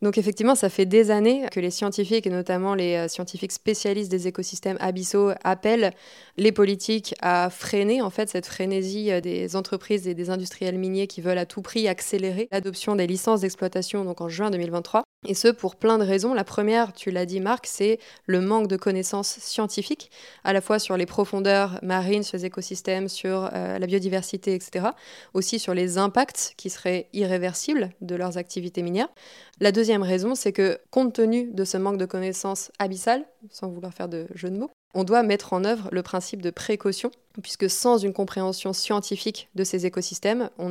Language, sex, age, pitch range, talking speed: French, female, 20-39, 185-215 Hz, 190 wpm